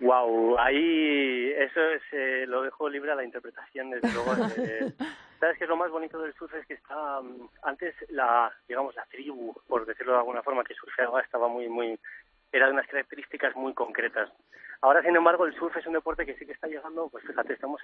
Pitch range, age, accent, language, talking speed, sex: 125-160 Hz, 30-49, Spanish, Spanish, 210 wpm, male